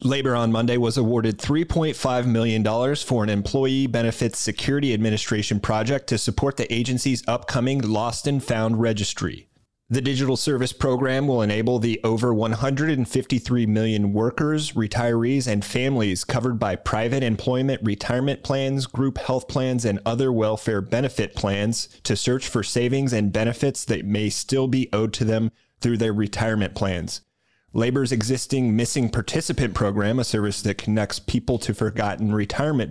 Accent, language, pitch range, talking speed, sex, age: American, English, 110-130 Hz, 150 wpm, male, 30-49